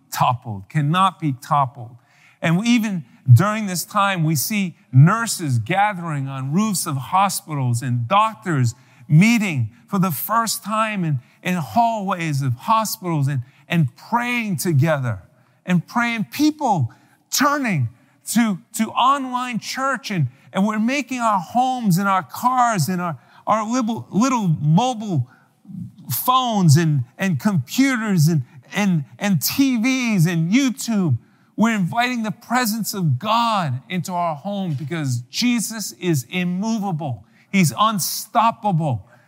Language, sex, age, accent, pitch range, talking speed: English, male, 50-69, American, 145-215 Hz, 125 wpm